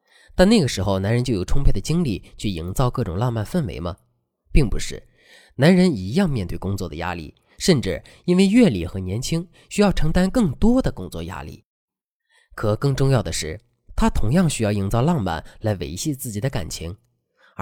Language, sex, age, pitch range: Chinese, male, 20-39, 95-155 Hz